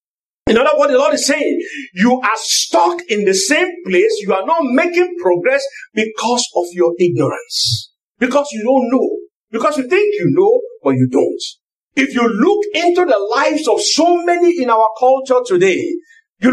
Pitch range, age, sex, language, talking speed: 235-350 Hz, 50-69, male, English, 180 wpm